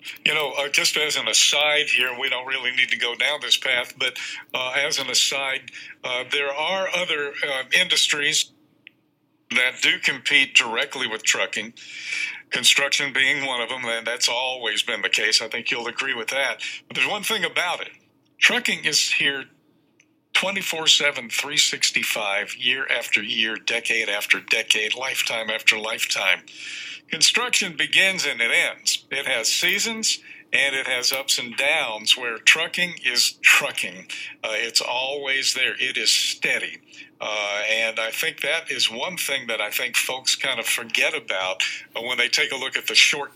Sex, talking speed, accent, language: male, 165 wpm, American, English